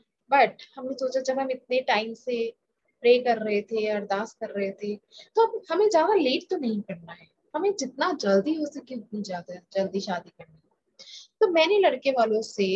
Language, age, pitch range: Hindi, 30-49, 210-305 Hz